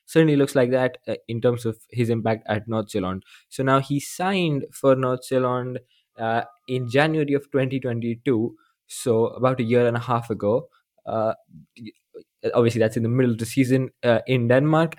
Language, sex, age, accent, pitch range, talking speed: English, male, 20-39, Indian, 110-130 Hz, 180 wpm